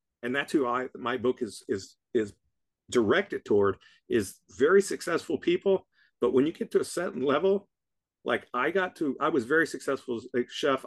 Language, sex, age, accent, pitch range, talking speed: English, male, 50-69, American, 120-155 Hz, 190 wpm